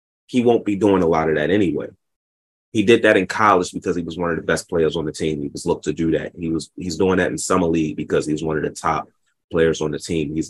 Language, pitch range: English, 75-95 Hz